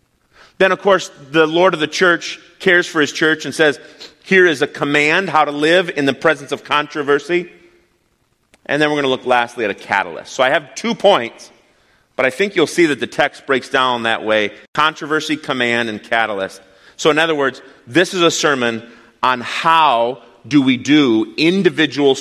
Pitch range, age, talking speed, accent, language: 105-145 Hz, 30-49, 190 wpm, American, English